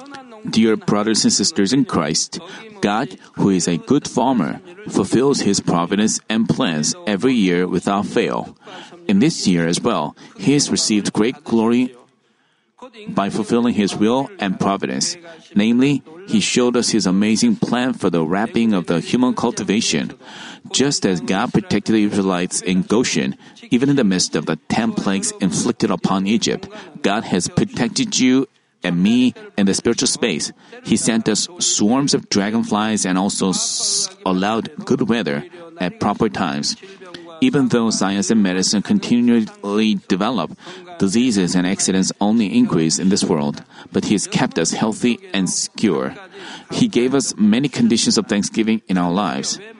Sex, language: male, Korean